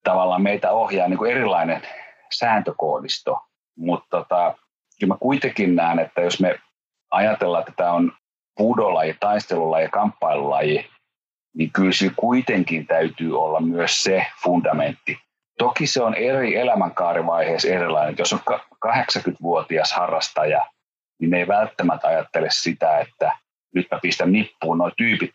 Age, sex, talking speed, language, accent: 40-59, male, 125 wpm, Finnish, native